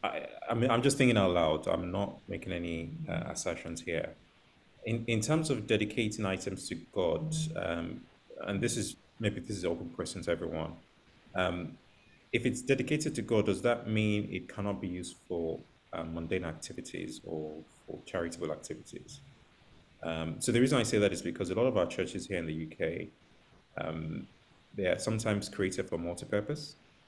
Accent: British